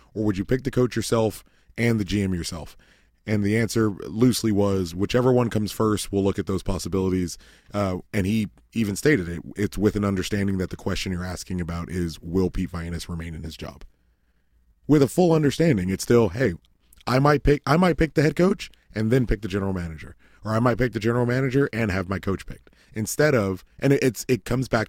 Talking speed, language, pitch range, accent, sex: 210 wpm, English, 90-120 Hz, American, male